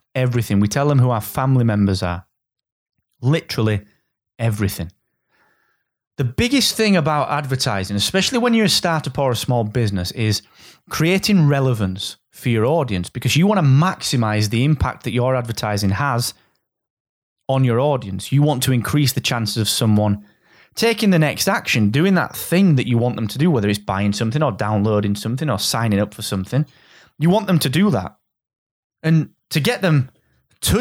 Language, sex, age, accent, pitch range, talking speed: English, male, 30-49, British, 105-150 Hz, 175 wpm